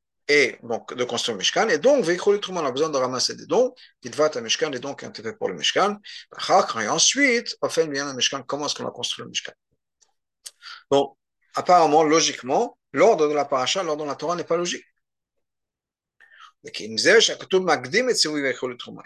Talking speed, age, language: 165 wpm, 50-69, French